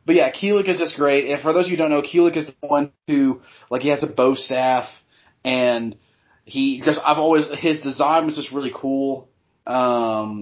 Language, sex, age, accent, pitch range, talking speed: English, male, 30-49, American, 115-150 Hz, 215 wpm